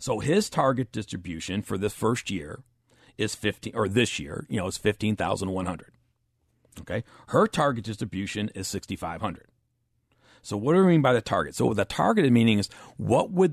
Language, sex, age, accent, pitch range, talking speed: English, male, 50-69, American, 105-135 Hz, 170 wpm